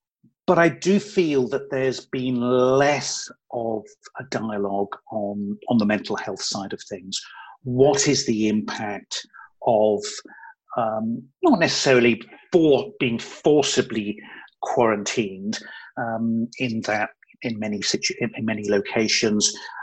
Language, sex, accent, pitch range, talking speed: English, male, British, 110-155 Hz, 110 wpm